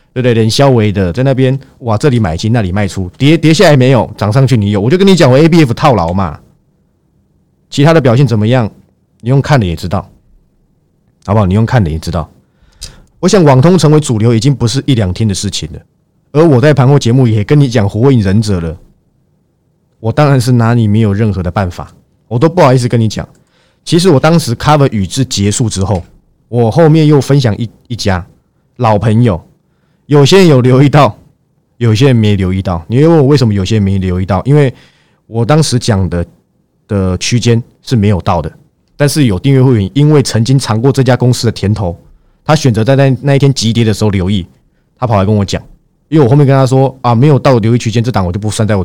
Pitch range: 105-145 Hz